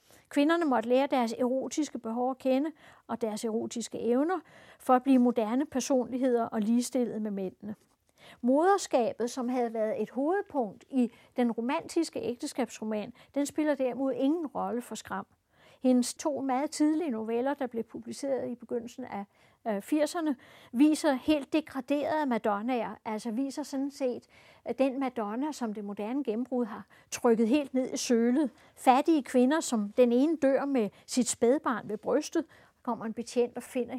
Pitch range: 230-275 Hz